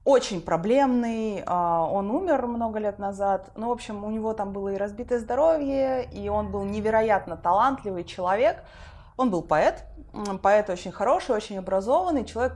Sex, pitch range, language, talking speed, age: female, 190-265 Hz, Russian, 155 wpm, 20-39